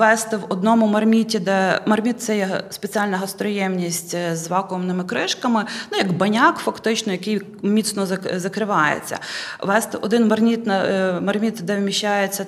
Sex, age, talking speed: female, 20-39, 125 wpm